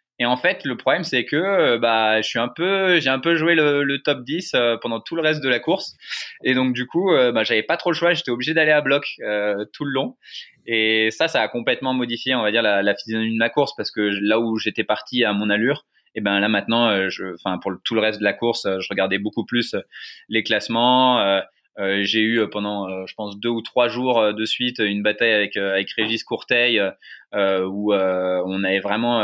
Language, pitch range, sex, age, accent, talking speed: French, 105-135 Hz, male, 20-39, French, 250 wpm